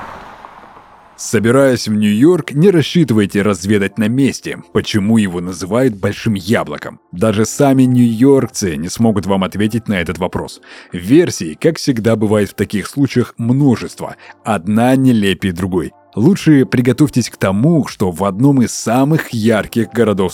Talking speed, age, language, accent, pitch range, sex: 135 wpm, 30-49, Russian, native, 100-125 Hz, male